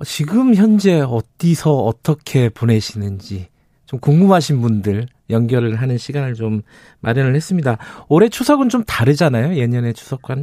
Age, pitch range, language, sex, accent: 40-59, 120-165 Hz, Korean, male, native